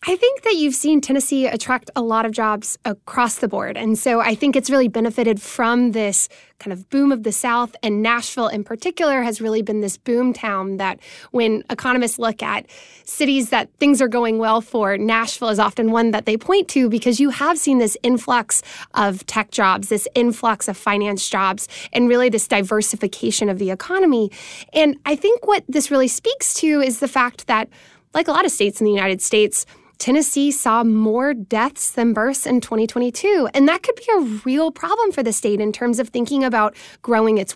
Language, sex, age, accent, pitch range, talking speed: English, female, 10-29, American, 215-285 Hz, 200 wpm